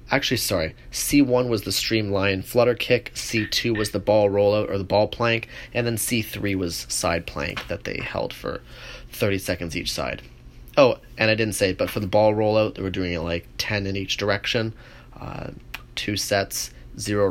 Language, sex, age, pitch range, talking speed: English, male, 30-49, 95-115 Hz, 190 wpm